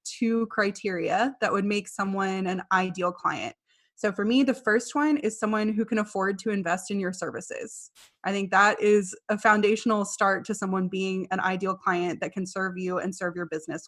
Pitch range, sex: 200-235 Hz, female